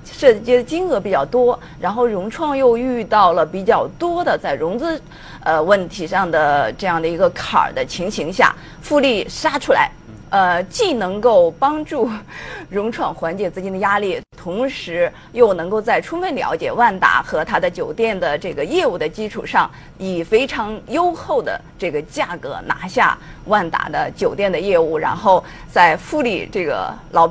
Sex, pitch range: female, 190-295 Hz